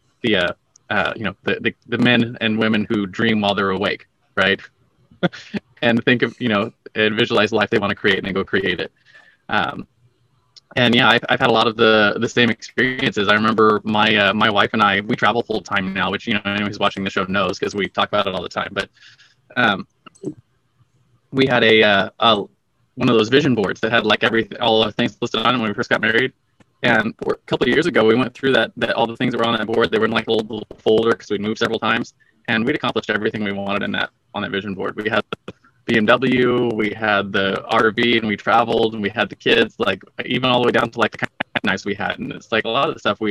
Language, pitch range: English, 105-120 Hz